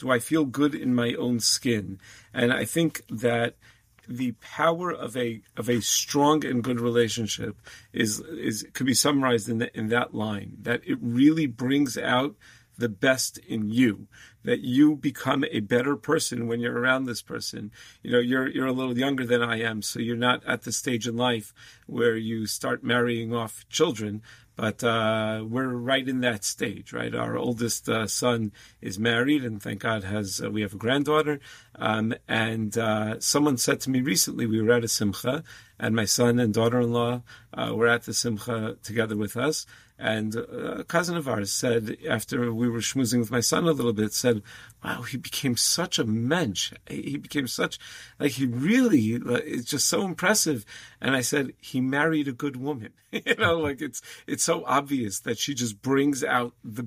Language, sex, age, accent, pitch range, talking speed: English, male, 40-59, American, 115-130 Hz, 190 wpm